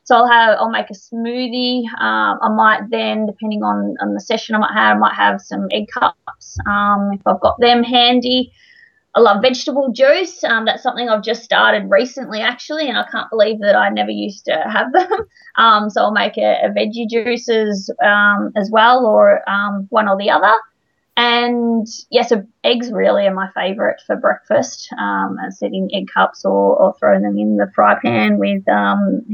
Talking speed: 200 wpm